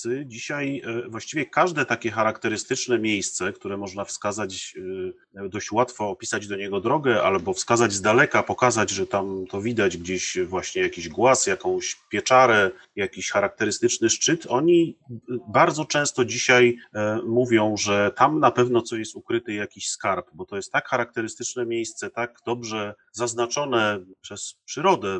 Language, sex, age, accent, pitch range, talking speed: Polish, male, 30-49, native, 105-125 Hz, 140 wpm